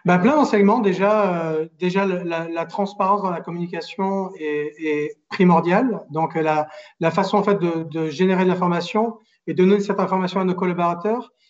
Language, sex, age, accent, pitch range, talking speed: French, male, 40-59, French, 170-200 Hz, 190 wpm